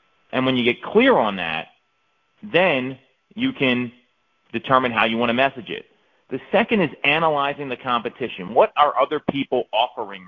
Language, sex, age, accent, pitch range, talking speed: English, male, 40-59, American, 120-155 Hz, 165 wpm